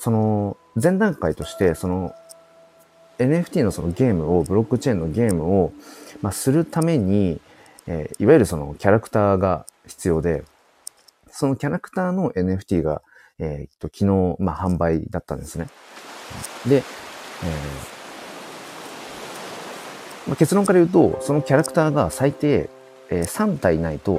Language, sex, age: Japanese, male, 40-59